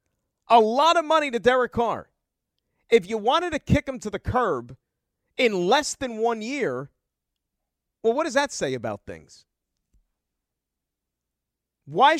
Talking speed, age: 145 wpm, 40-59